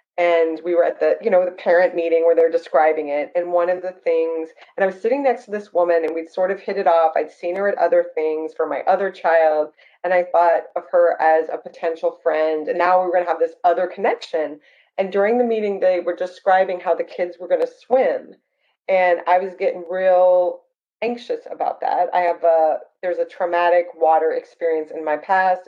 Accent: American